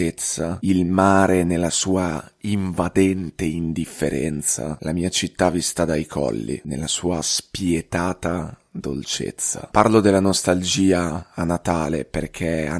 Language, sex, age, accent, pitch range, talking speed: Italian, male, 30-49, native, 85-95 Hz, 110 wpm